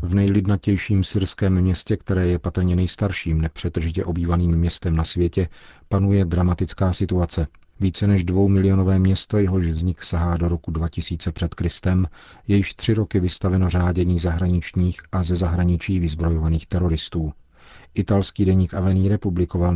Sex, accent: male, native